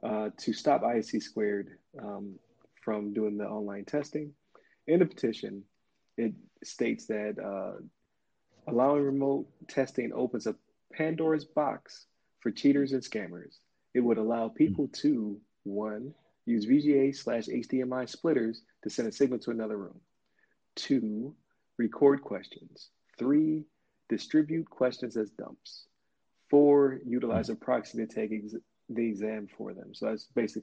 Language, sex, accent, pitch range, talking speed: English, male, American, 110-145 Hz, 135 wpm